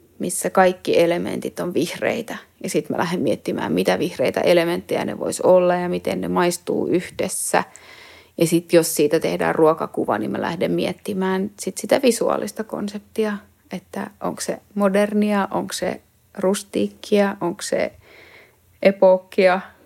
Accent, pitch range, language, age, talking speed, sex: Finnish, 165-195 Hz, English, 30-49, 135 wpm, female